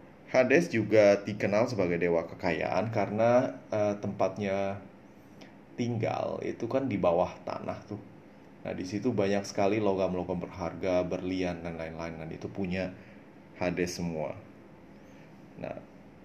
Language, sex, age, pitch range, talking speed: Indonesian, male, 30-49, 90-110 Hz, 120 wpm